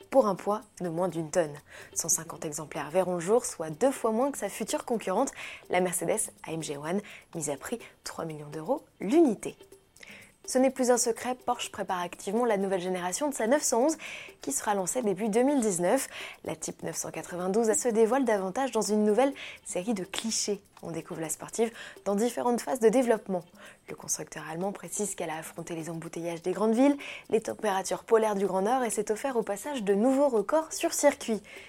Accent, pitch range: French, 175-245 Hz